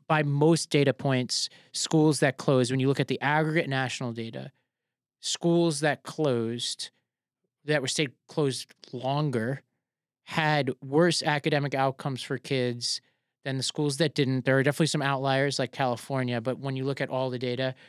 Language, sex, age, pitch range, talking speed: English, male, 30-49, 125-150 Hz, 165 wpm